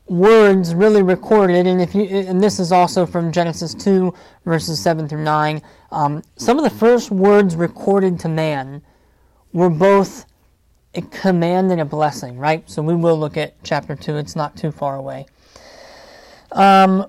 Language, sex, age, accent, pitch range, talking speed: English, male, 30-49, American, 155-185 Hz, 165 wpm